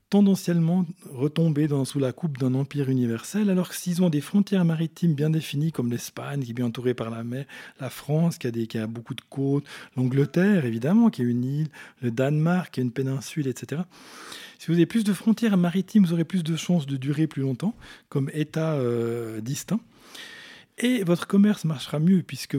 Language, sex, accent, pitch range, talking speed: French, male, French, 125-175 Hz, 200 wpm